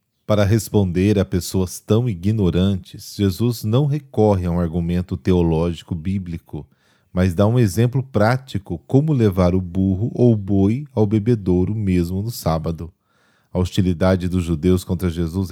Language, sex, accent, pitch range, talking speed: Portuguese, male, Brazilian, 90-105 Hz, 145 wpm